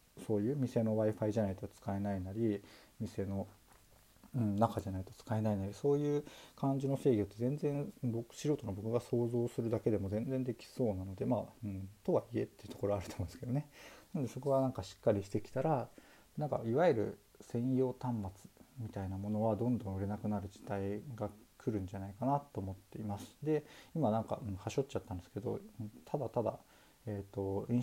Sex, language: male, Japanese